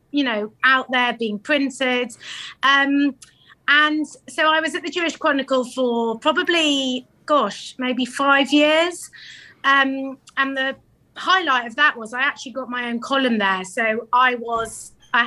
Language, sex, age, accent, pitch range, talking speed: English, female, 20-39, British, 235-280 Hz, 150 wpm